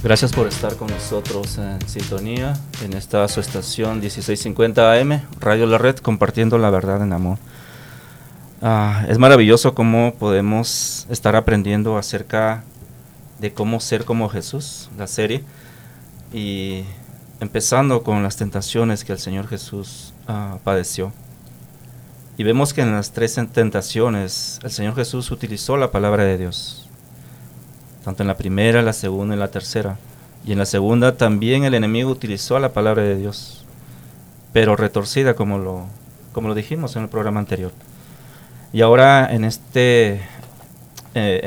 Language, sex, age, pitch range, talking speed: English, male, 30-49, 105-125 Hz, 140 wpm